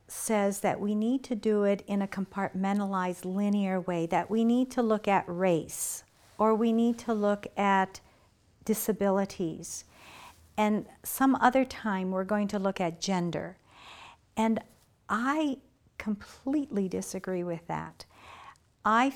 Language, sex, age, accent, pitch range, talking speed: English, female, 50-69, American, 175-220 Hz, 135 wpm